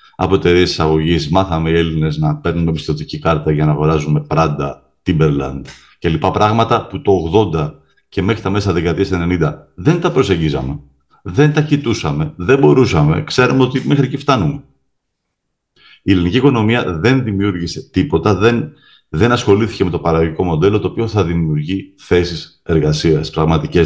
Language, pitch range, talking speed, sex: Greek, 80-110 Hz, 150 wpm, male